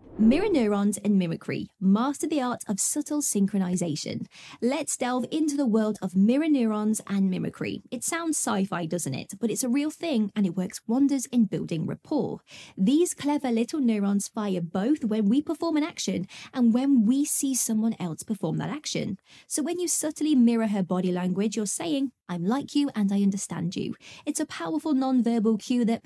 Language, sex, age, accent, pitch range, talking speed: English, female, 20-39, British, 195-280 Hz, 185 wpm